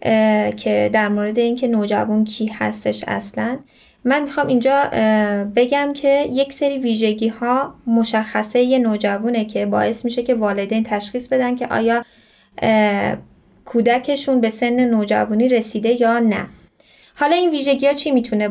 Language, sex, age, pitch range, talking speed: Persian, female, 10-29, 215-255 Hz, 135 wpm